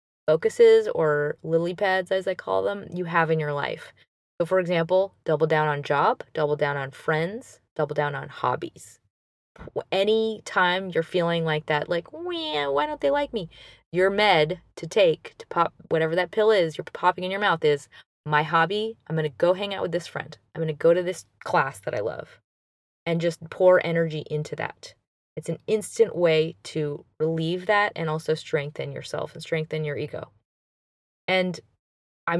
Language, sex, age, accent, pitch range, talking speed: English, female, 20-39, American, 155-185 Hz, 185 wpm